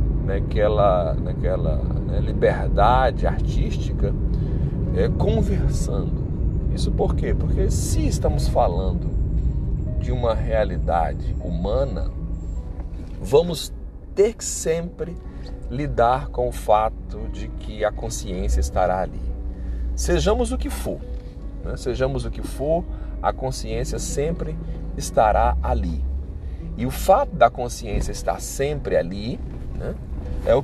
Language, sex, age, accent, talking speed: Portuguese, male, 40-59, Brazilian, 110 wpm